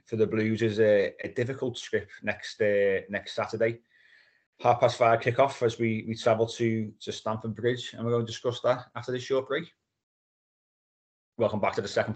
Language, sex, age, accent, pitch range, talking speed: English, male, 30-49, British, 105-130 Hz, 190 wpm